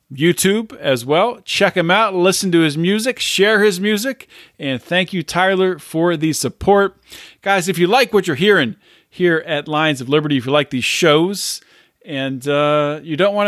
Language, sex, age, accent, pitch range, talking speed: English, male, 40-59, American, 145-185 Hz, 185 wpm